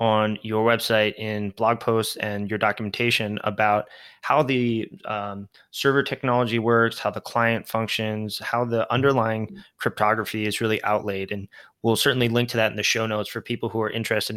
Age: 20-39